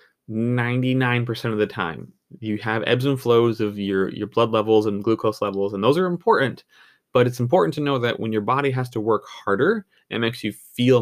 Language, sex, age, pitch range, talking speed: English, male, 20-39, 105-135 Hz, 200 wpm